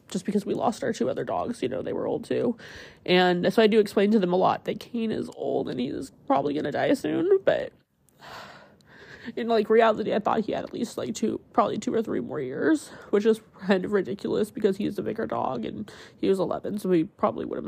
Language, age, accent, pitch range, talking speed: English, 20-39, American, 195-230 Hz, 240 wpm